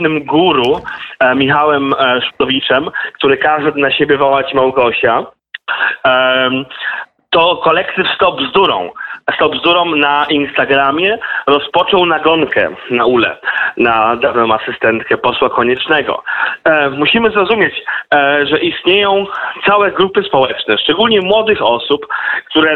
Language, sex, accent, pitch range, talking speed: Polish, male, native, 135-180 Hz, 100 wpm